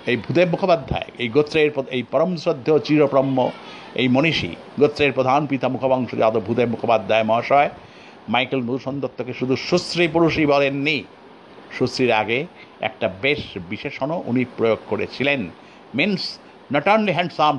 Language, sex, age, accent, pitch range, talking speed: Bengali, male, 50-69, native, 115-150 Hz, 125 wpm